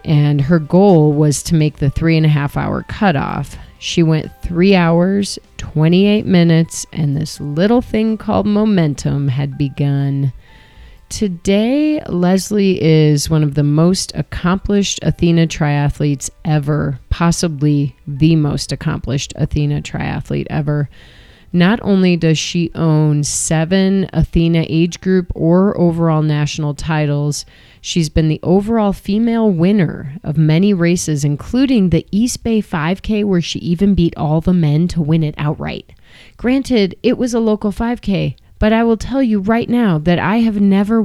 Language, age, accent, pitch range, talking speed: English, 30-49, American, 150-200 Hz, 145 wpm